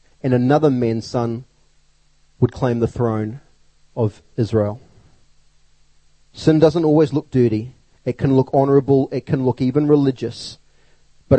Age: 30-49